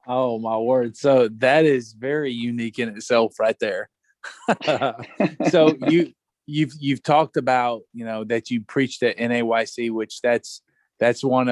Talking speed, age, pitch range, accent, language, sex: 150 wpm, 20-39, 115-130 Hz, American, English, male